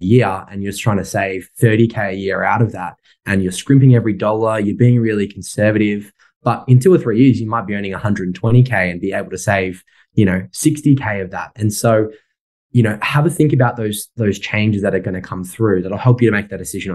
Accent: Australian